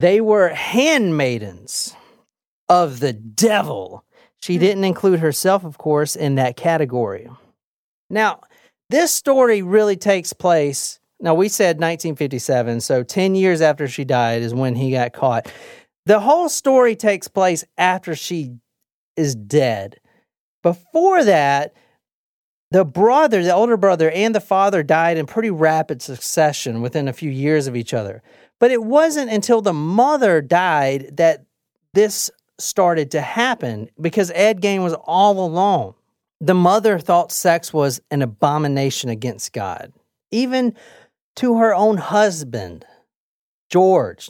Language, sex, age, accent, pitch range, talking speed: English, male, 40-59, American, 145-210 Hz, 135 wpm